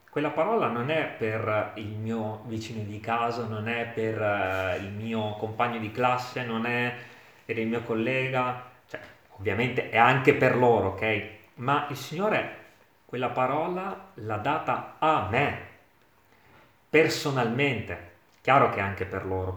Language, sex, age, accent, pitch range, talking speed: Italian, male, 30-49, native, 110-155 Hz, 145 wpm